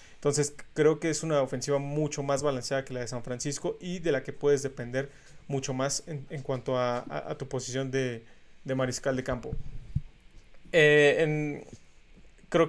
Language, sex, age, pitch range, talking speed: Spanish, male, 30-49, 130-145 Hz, 180 wpm